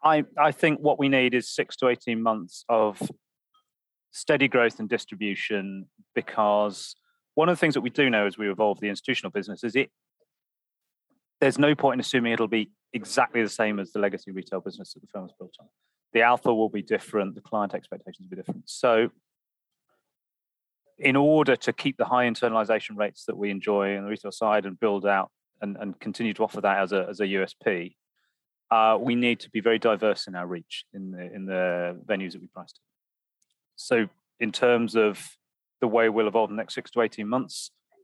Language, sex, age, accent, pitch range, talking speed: English, male, 30-49, British, 105-125 Hz, 200 wpm